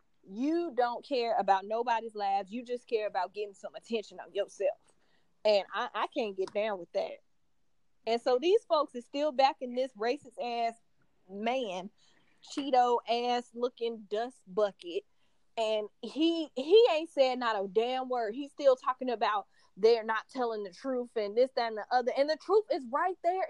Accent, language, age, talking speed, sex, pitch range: American, English, 20-39, 170 wpm, female, 230-320 Hz